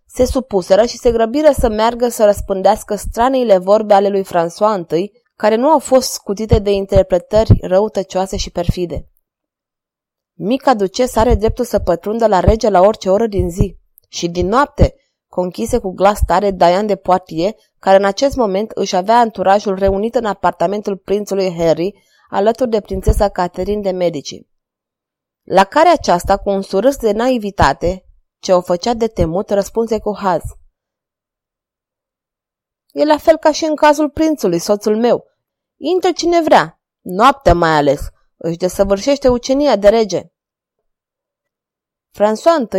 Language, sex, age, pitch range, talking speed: Romanian, female, 20-39, 185-235 Hz, 145 wpm